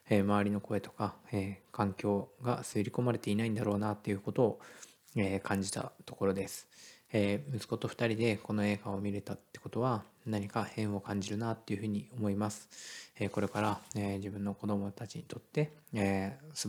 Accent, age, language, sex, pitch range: native, 20-39, Japanese, male, 100-115 Hz